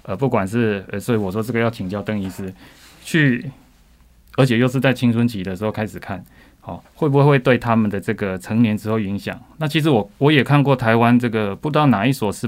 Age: 20-39